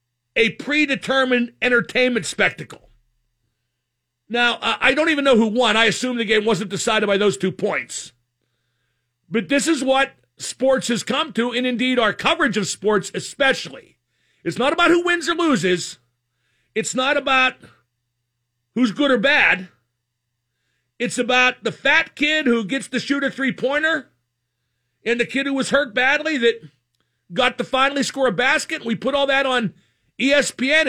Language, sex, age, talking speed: English, male, 50-69, 155 wpm